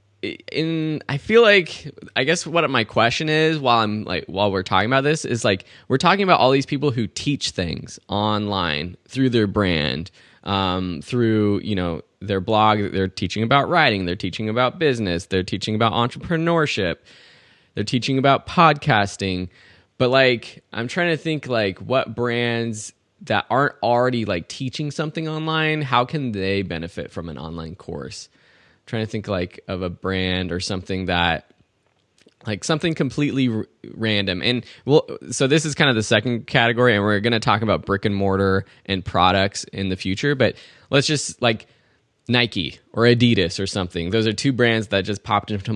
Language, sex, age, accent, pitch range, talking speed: English, male, 20-39, American, 95-130 Hz, 175 wpm